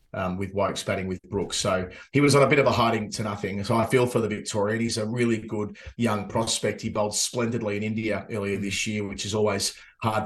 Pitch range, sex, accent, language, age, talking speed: 105-120 Hz, male, Australian, English, 30-49, 240 wpm